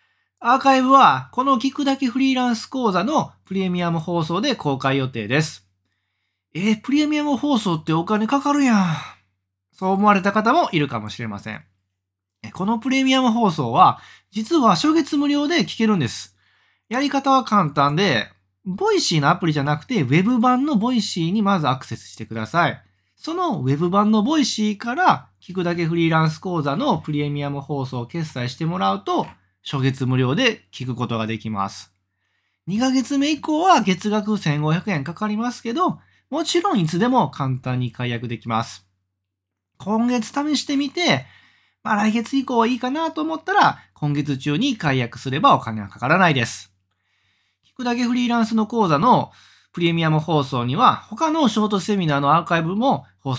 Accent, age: native, 20-39